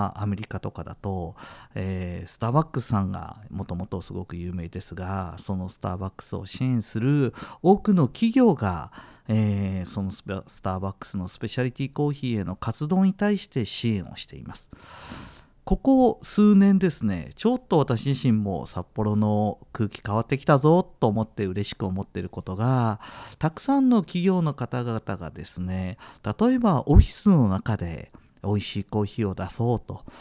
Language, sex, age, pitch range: Japanese, male, 40-59, 95-130 Hz